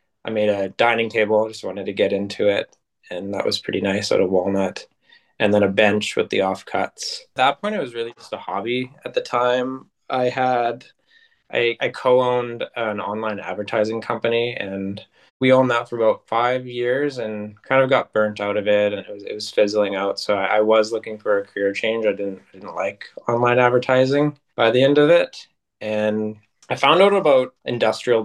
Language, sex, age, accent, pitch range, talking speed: English, male, 20-39, American, 105-130 Hz, 205 wpm